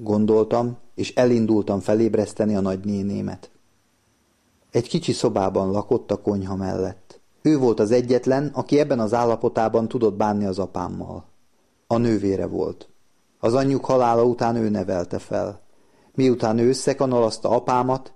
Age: 30-49